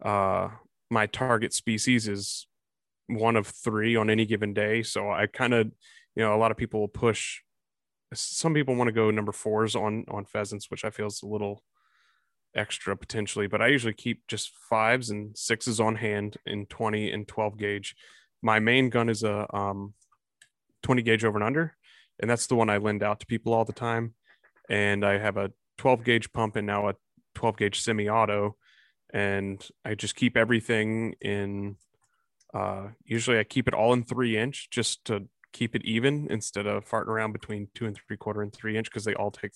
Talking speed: 195 wpm